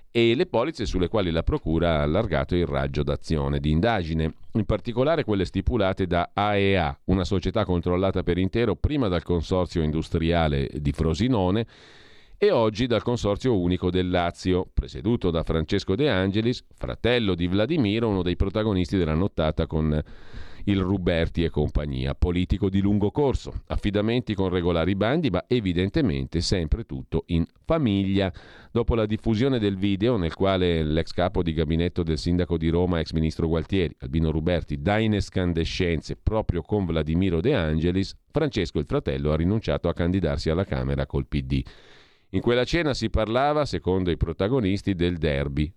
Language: Italian